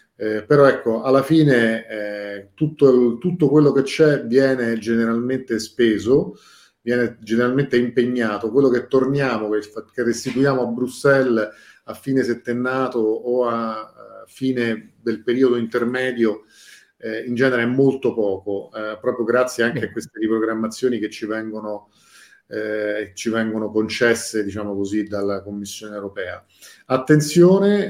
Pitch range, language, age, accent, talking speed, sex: 110-130 Hz, Italian, 40-59, native, 125 wpm, male